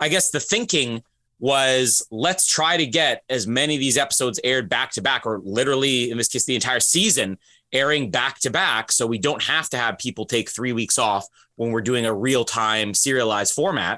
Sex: male